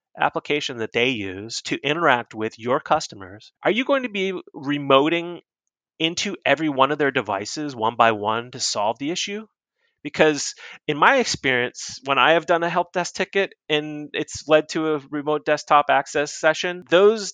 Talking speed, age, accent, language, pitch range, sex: 175 wpm, 30-49, American, English, 130-180 Hz, male